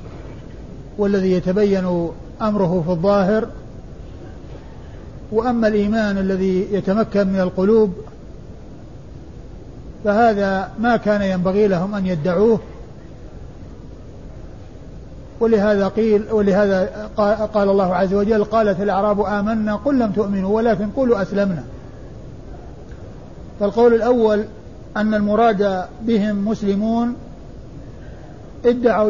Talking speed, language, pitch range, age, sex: 85 wpm, Arabic, 190-215 Hz, 50-69, male